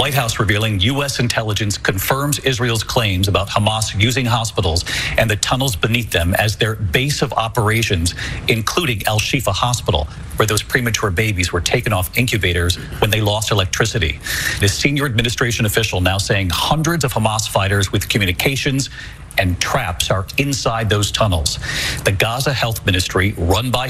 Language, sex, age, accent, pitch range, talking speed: English, male, 50-69, American, 105-165 Hz, 155 wpm